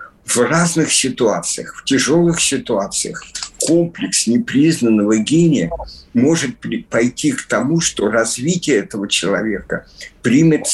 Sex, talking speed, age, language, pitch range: male, 100 wpm, 50-69, Russian, 110-160 Hz